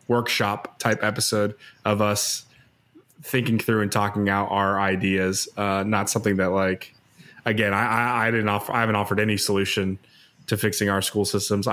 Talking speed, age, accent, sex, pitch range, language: 165 wpm, 20-39, American, male, 95-115 Hz, English